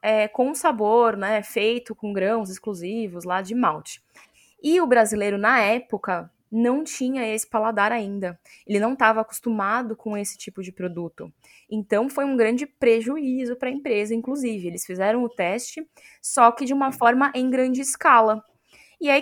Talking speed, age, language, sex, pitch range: 165 wpm, 10-29, Portuguese, female, 215-270 Hz